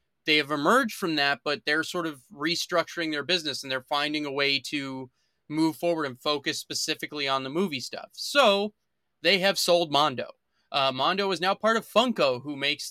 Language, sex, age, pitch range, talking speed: English, male, 20-39, 140-170 Hz, 190 wpm